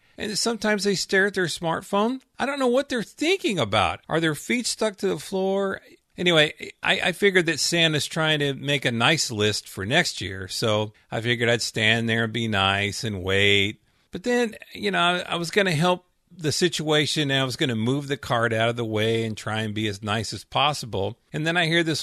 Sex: male